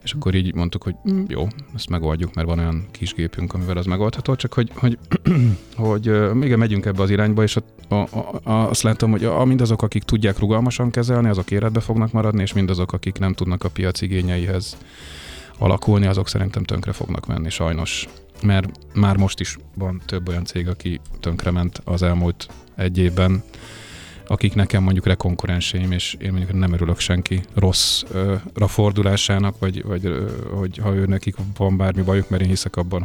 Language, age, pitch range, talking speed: Hungarian, 30-49, 90-105 Hz, 180 wpm